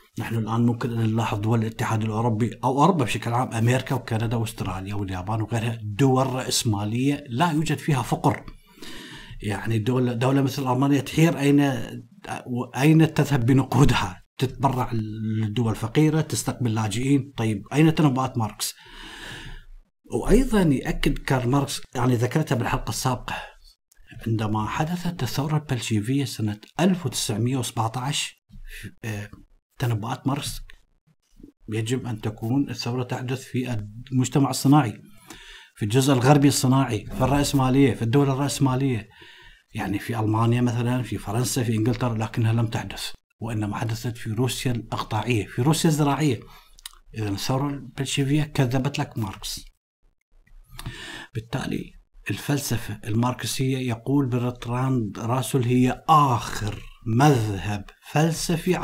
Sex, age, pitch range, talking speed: male, 50-69, 110-140 Hz, 110 wpm